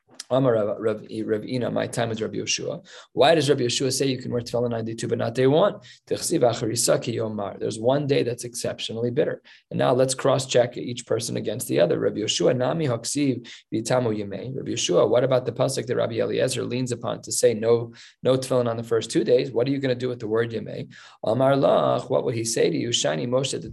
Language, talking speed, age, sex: English, 210 wpm, 20-39, male